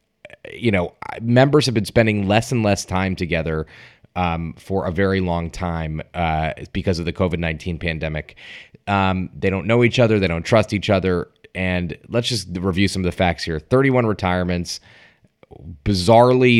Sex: male